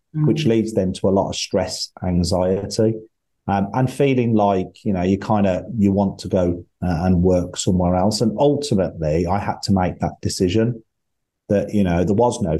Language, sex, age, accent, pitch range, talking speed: English, male, 30-49, British, 90-105 Hz, 195 wpm